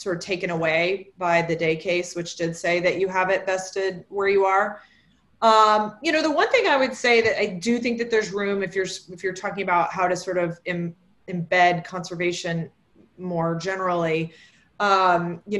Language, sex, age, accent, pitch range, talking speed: English, female, 20-39, American, 180-210 Hz, 200 wpm